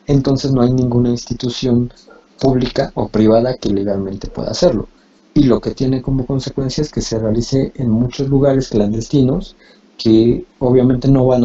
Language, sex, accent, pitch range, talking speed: Spanish, male, Mexican, 110-130 Hz, 155 wpm